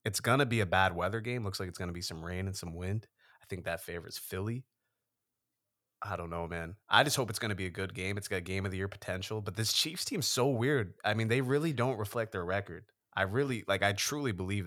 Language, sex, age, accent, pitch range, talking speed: English, male, 20-39, American, 90-115 Hz, 265 wpm